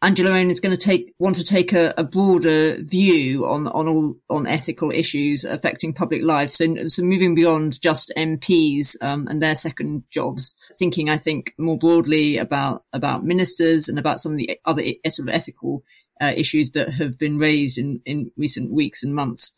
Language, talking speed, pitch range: English, 190 wpm, 145-170 Hz